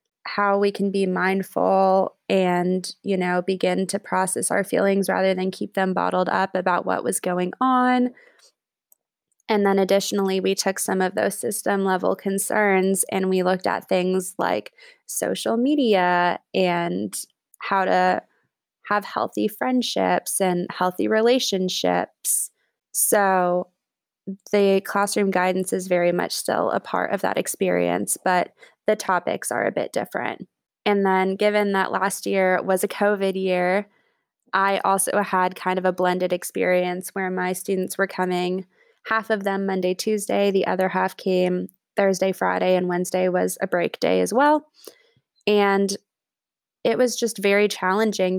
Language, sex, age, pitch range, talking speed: English, female, 20-39, 185-205 Hz, 150 wpm